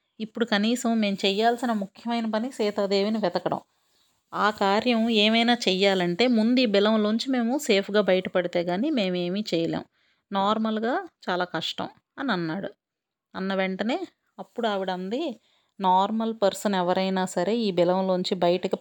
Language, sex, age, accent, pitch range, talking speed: Telugu, female, 30-49, native, 185-220 Hz, 120 wpm